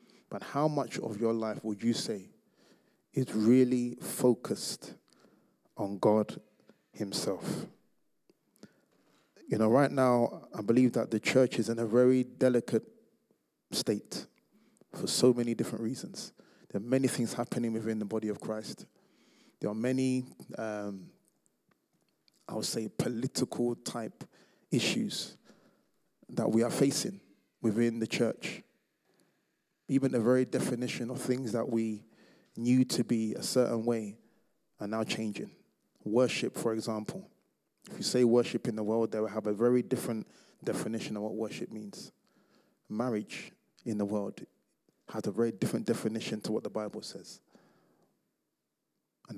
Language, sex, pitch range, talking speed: English, male, 110-125 Hz, 140 wpm